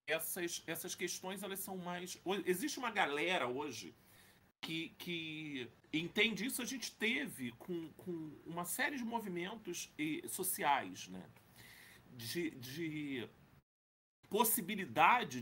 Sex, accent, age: male, Brazilian, 40-59